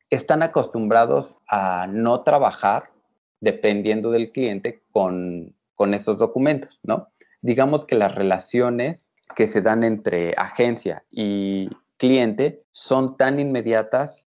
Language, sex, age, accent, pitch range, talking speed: Spanish, male, 30-49, Mexican, 100-130 Hz, 115 wpm